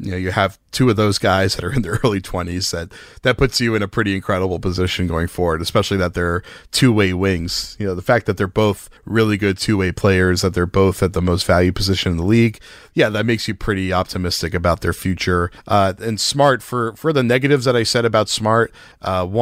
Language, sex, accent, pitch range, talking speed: English, male, American, 90-110 Hz, 235 wpm